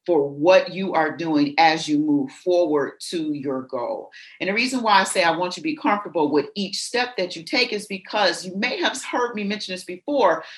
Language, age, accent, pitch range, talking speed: English, 40-59, American, 170-240 Hz, 225 wpm